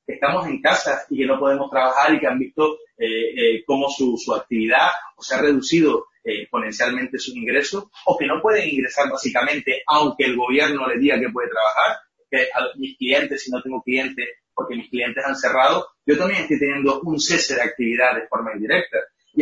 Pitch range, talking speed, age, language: 125-160 Hz, 200 wpm, 30-49, Spanish